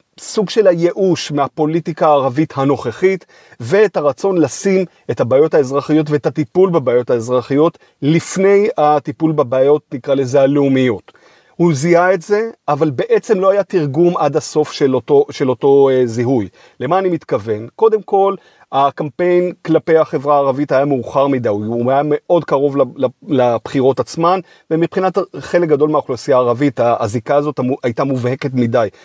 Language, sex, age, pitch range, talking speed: Hebrew, male, 30-49, 135-165 Hz, 130 wpm